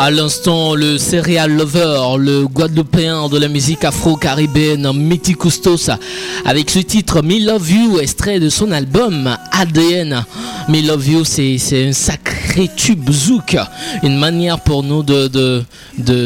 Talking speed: 155 wpm